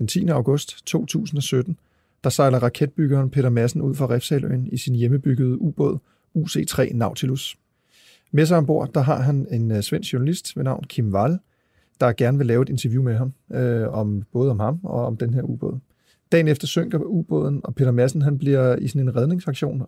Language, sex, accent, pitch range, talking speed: Danish, male, native, 125-145 Hz, 185 wpm